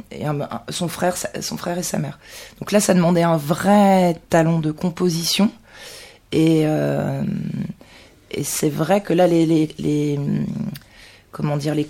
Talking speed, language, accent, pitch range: 150 wpm, French, French, 155-185 Hz